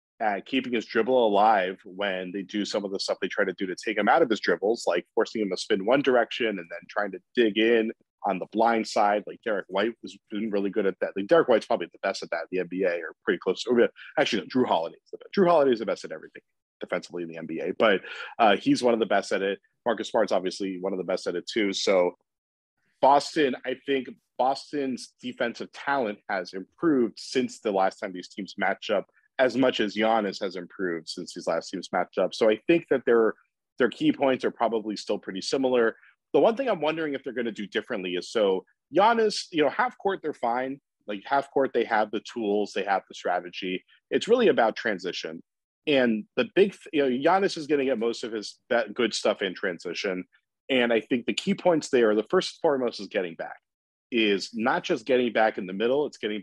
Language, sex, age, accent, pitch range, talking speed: English, male, 30-49, American, 105-155 Hz, 230 wpm